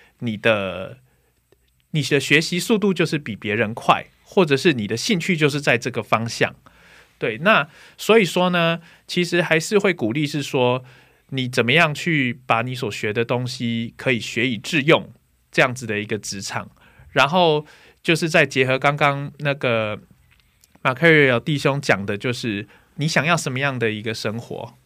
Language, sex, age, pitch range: Korean, male, 20-39, 115-160 Hz